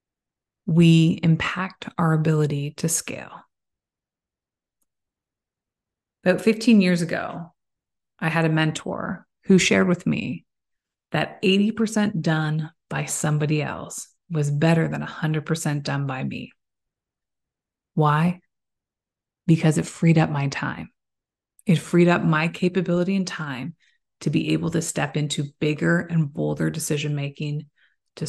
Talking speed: 120 wpm